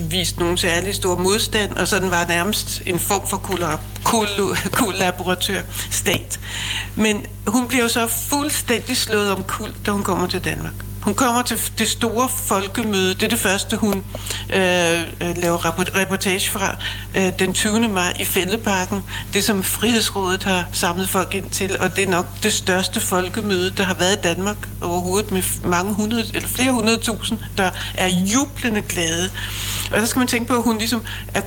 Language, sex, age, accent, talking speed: Danish, female, 60-79, native, 175 wpm